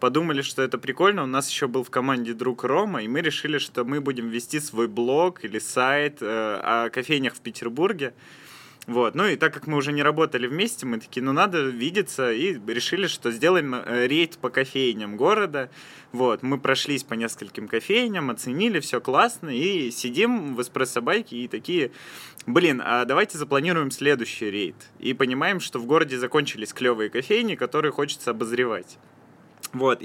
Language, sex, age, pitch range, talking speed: Russian, male, 20-39, 120-145 Hz, 165 wpm